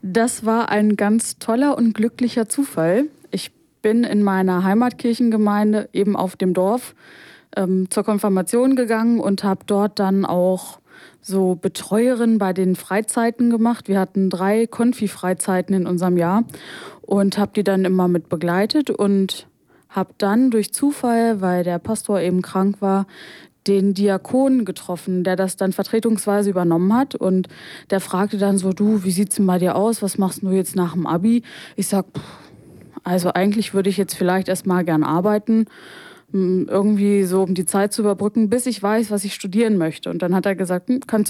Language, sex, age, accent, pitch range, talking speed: German, female, 20-39, German, 190-225 Hz, 170 wpm